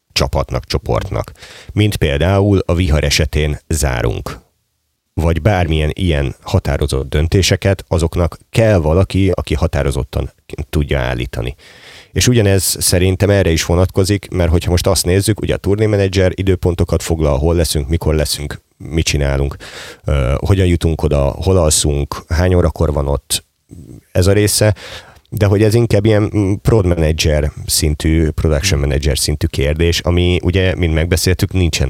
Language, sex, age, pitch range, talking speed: Hungarian, male, 30-49, 75-95 Hz, 135 wpm